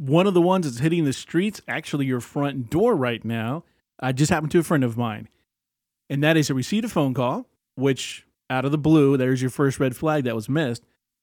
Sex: male